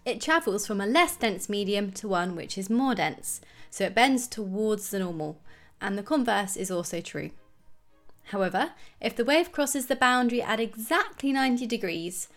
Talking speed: 175 wpm